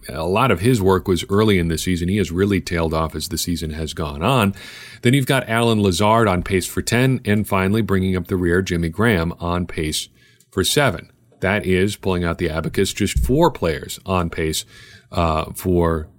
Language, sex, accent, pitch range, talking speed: English, male, American, 90-110 Hz, 205 wpm